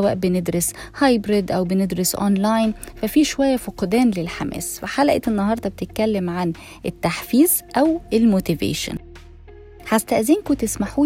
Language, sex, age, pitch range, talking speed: Arabic, female, 20-39, 185-245 Hz, 105 wpm